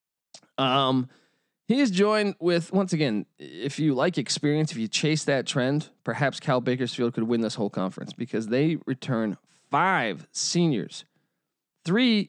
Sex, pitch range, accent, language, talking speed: male, 130-170 Hz, American, English, 145 wpm